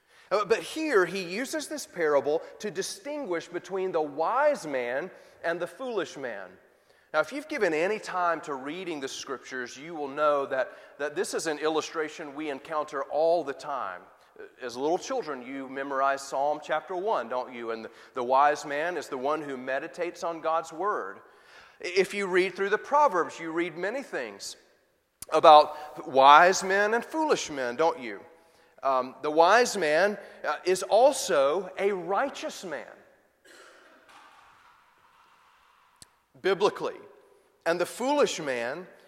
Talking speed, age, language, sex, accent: 150 wpm, 30-49, English, male, American